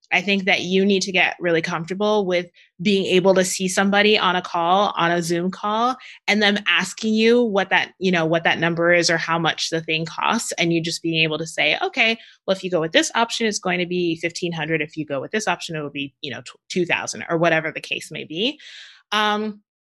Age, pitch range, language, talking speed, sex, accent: 20-39, 165-205 Hz, English, 245 wpm, female, American